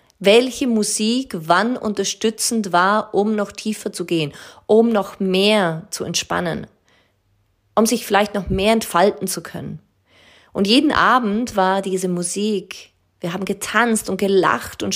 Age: 30-49